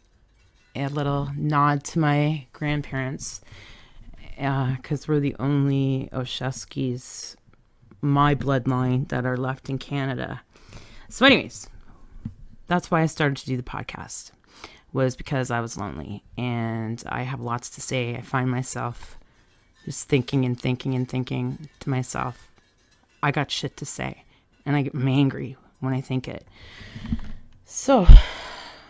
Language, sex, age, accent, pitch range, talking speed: English, female, 30-49, American, 125-155 Hz, 135 wpm